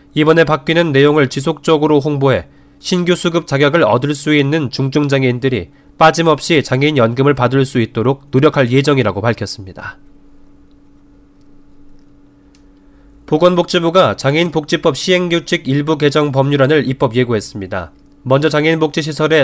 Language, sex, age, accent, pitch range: Korean, male, 20-39, native, 120-155 Hz